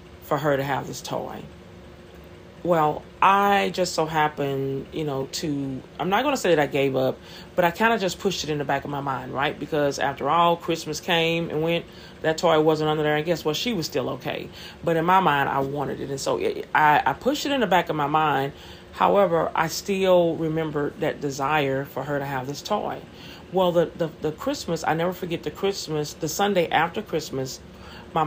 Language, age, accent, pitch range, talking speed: English, 40-59, American, 145-175 Hz, 220 wpm